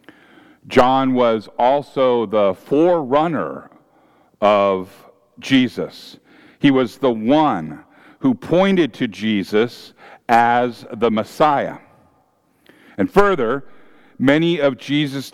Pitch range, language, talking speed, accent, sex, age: 115-175 Hz, English, 90 wpm, American, male, 50-69